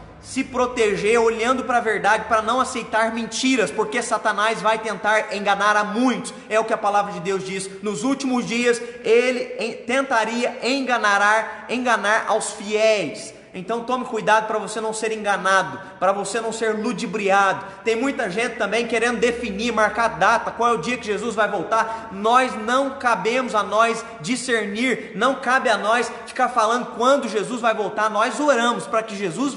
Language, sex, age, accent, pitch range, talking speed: Portuguese, male, 20-39, Brazilian, 215-245 Hz, 170 wpm